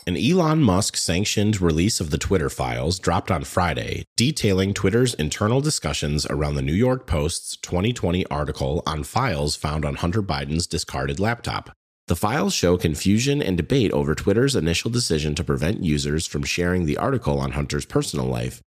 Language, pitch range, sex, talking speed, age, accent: English, 75-105 Hz, male, 165 wpm, 30-49, American